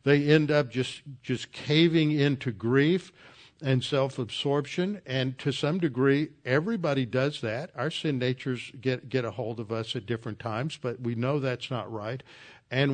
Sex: male